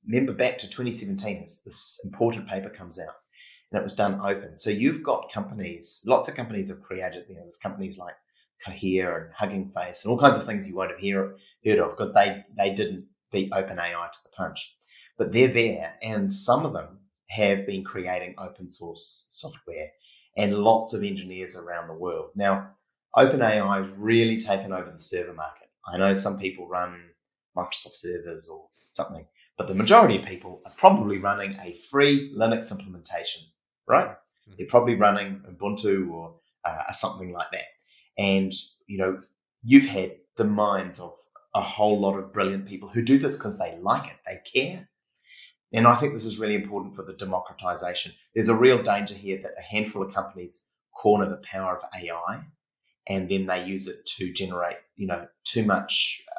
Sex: male